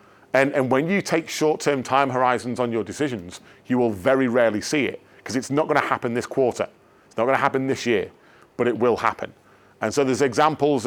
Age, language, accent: 40-59, English, British